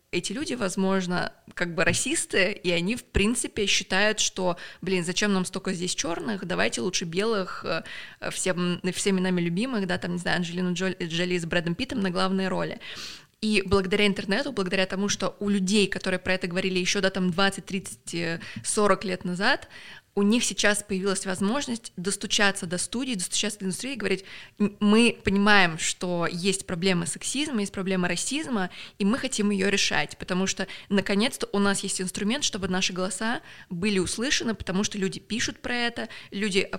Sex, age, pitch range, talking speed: female, 20-39, 185-210 Hz, 165 wpm